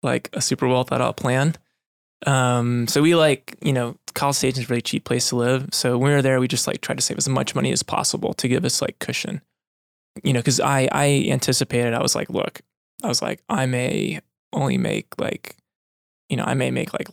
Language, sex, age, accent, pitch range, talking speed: English, male, 20-39, American, 125-140 Hz, 235 wpm